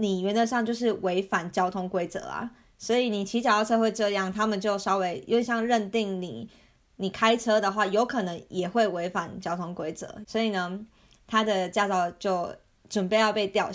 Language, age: Chinese, 20-39